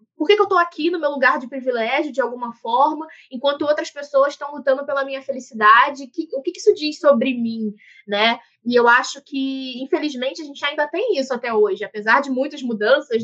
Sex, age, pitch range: female, 20-39, 240-305 Hz